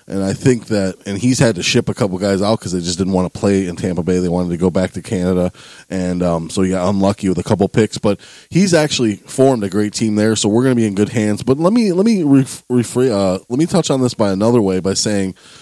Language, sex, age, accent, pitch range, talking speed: English, male, 20-39, American, 100-120 Hz, 285 wpm